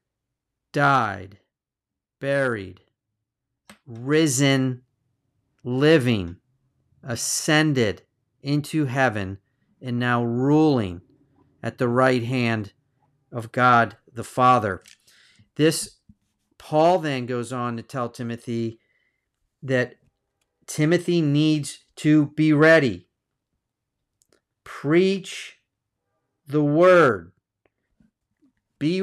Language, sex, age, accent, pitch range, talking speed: English, male, 40-59, American, 120-150 Hz, 75 wpm